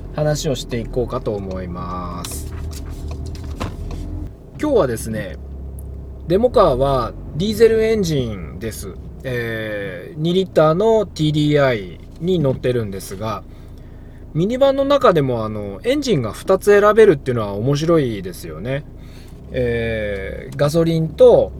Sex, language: male, Japanese